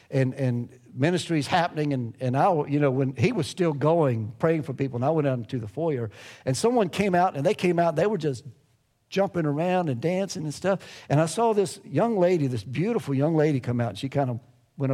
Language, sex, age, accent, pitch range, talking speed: English, male, 50-69, American, 115-150 Hz, 235 wpm